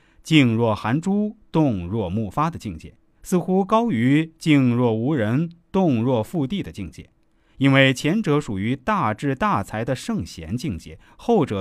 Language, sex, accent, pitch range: Chinese, male, native, 110-175 Hz